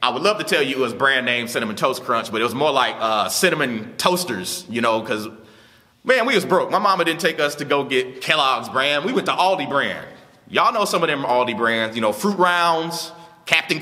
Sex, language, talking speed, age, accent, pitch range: male, English, 240 wpm, 30-49, American, 155-220 Hz